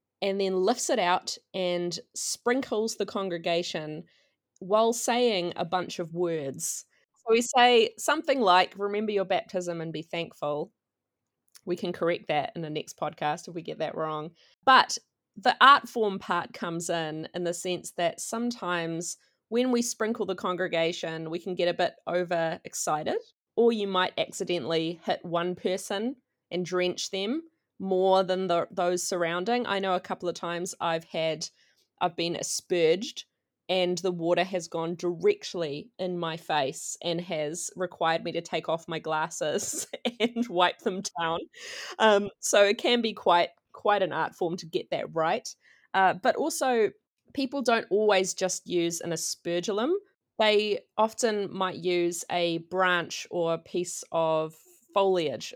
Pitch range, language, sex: 170-210 Hz, English, female